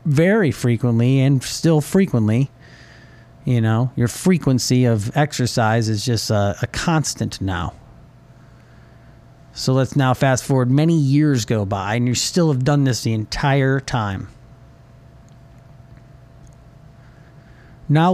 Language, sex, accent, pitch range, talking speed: English, male, American, 120-140 Hz, 120 wpm